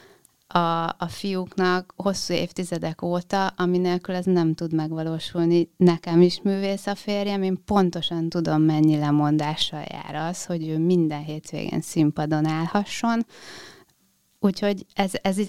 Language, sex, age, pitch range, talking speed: Hungarian, female, 30-49, 165-200 Hz, 125 wpm